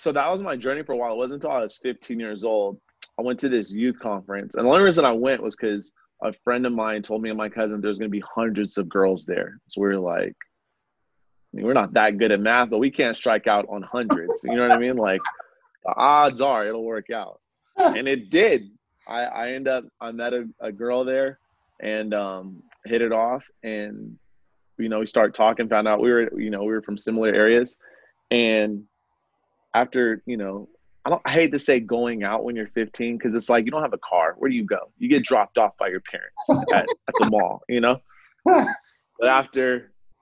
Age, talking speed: 20-39, 230 wpm